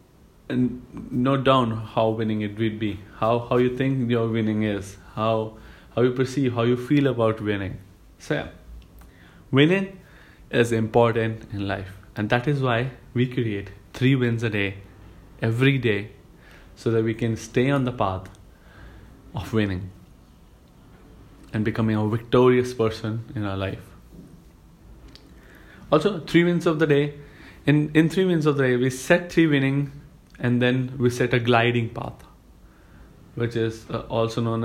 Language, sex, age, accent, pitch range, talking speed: English, male, 30-49, Indian, 110-135 Hz, 155 wpm